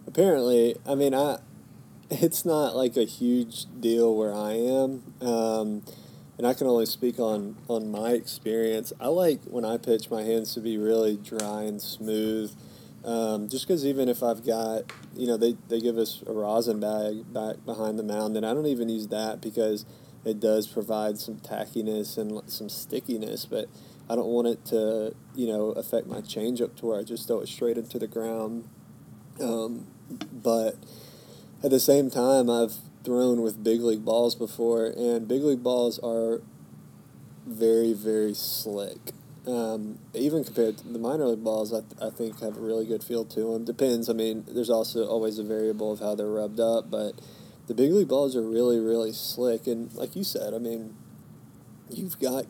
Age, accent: 20-39, American